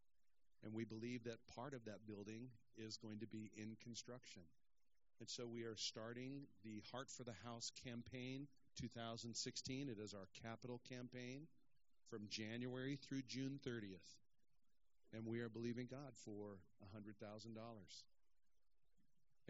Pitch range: 110-130 Hz